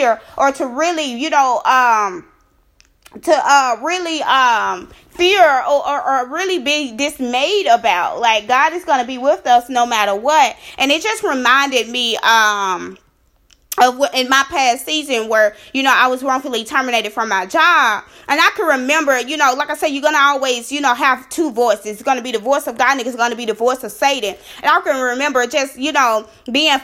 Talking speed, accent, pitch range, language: 200 wpm, American, 220-280 Hz, English